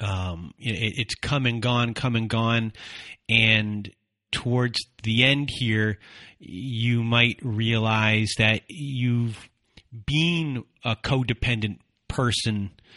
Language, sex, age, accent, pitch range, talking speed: English, male, 30-49, American, 105-120 Hz, 100 wpm